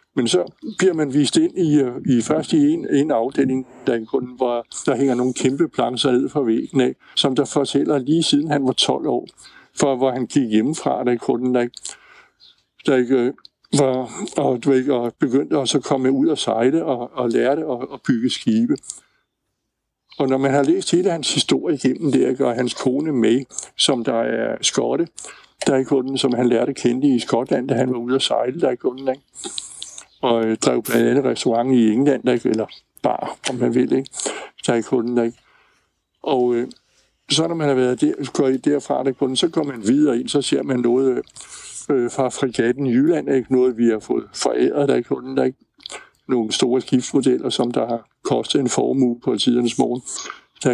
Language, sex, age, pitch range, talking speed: Danish, male, 60-79, 120-140 Hz, 185 wpm